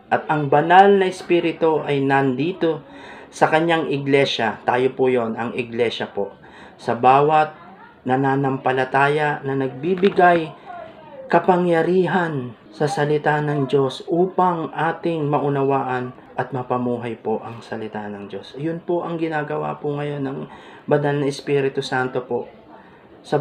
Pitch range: 130-155 Hz